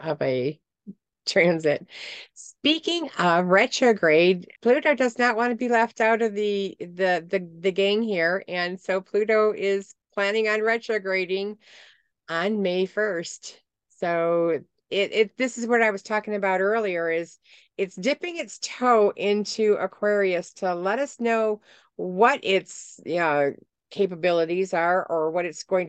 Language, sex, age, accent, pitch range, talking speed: English, female, 40-59, American, 165-215 Hz, 145 wpm